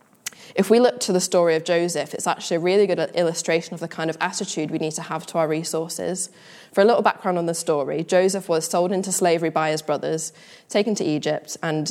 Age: 10-29